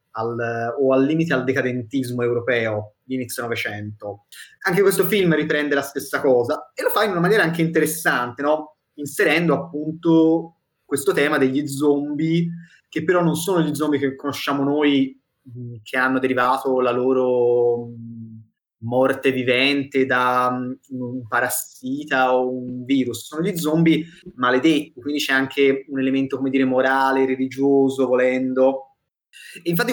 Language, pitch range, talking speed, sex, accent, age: Italian, 125-150 Hz, 140 wpm, male, native, 20-39